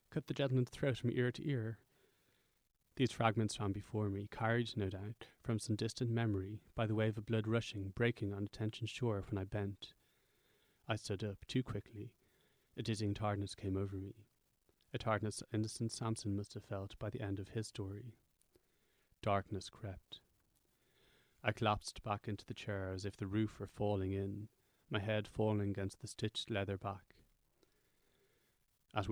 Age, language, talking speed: 30-49, English, 170 wpm